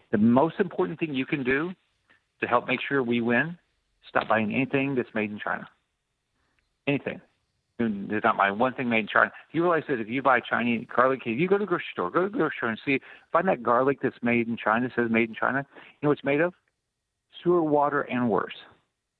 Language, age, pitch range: English, 50-69, 120-155 Hz